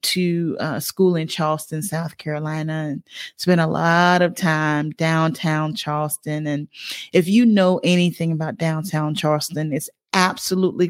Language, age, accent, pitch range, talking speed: English, 30-49, American, 160-190 Hz, 145 wpm